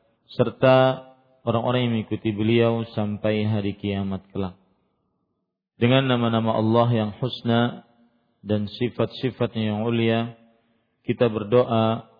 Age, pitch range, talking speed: 40-59, 110-125 Hz, 100 wpm